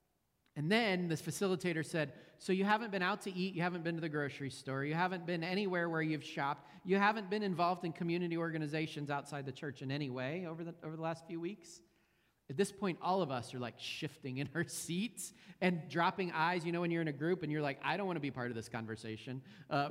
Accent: American